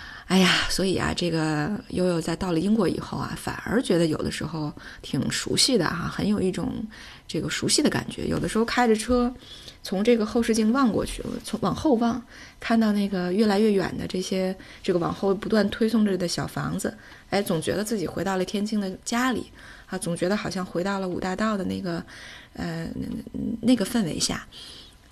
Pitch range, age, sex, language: 170-225 Hz, 20-39, female, Chinese